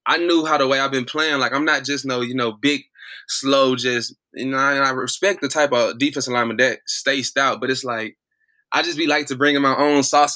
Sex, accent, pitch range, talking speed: male, American, 120-140 Hz, 255 wpm